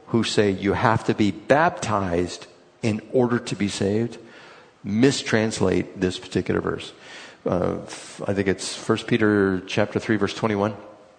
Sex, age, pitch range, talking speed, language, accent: male, 50-69, 100-120 Hz, 140 wpm, English, American